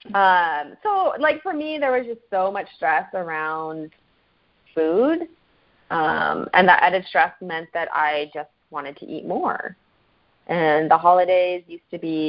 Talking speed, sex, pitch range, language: 155 wpm, female, 155-200 Hz, English